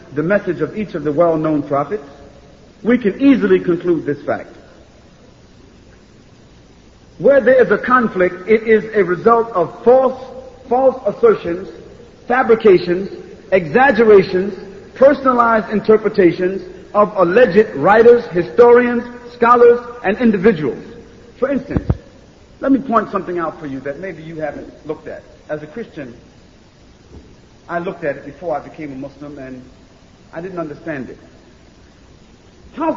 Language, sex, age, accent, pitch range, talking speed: Filipino, male, 50-69, American, 165-225 Hz, 130 wpm